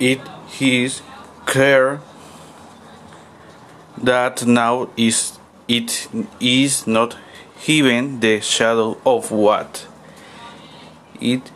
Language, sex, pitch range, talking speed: Spanish, male, 120-140 Hz, 80 wpm